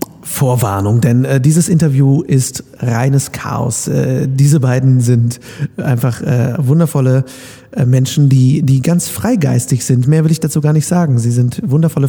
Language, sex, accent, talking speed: German, male, German, 160 wpm